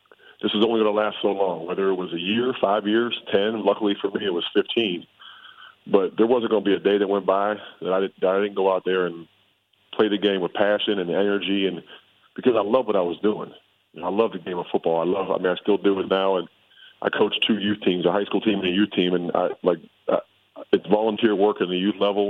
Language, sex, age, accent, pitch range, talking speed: English, male, 40-59, American, 90-105 Hz, 260 wpm